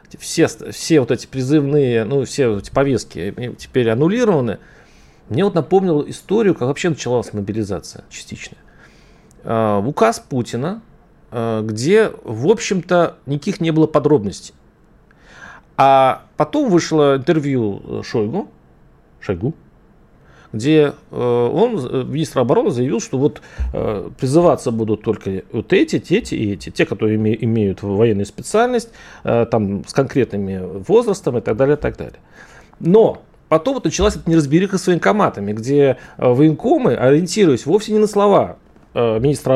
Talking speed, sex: 125 wpm, male